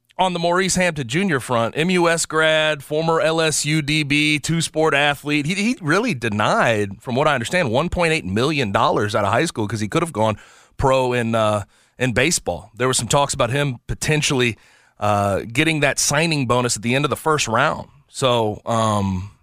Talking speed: 185 wpm